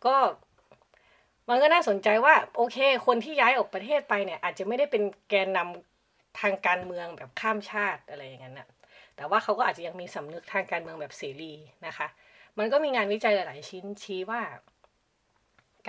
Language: Thai